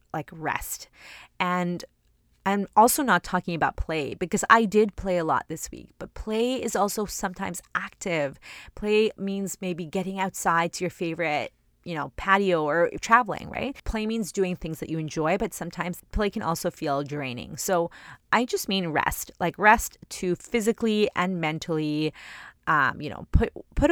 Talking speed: 170 wpm